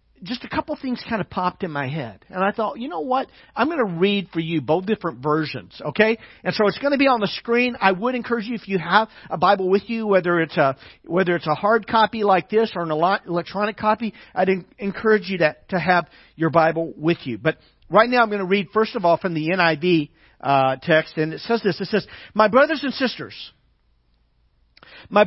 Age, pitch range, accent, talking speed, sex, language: 50-69, 155-235 Hz, American, 225 wpm, male, English